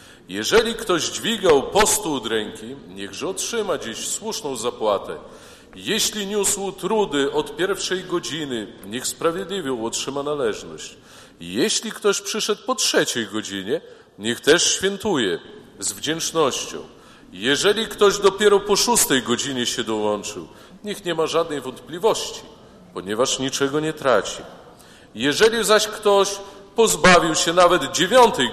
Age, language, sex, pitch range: 40-59, Polish, male, 135-205 Hz